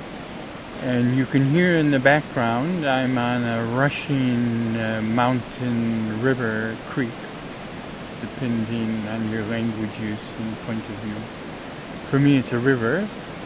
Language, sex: English, male